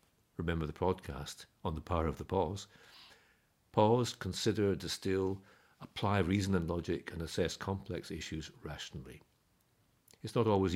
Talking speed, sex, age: 135 wpm, male, 60-79